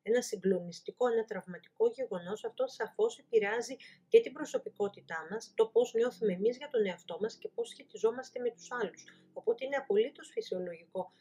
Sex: female